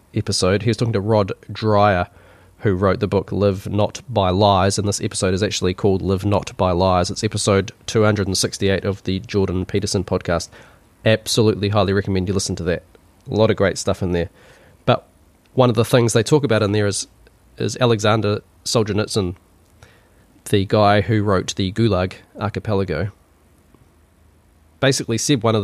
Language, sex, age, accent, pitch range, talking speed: English, male, 20-39, Australian, 95-115 Hz, 175 wpm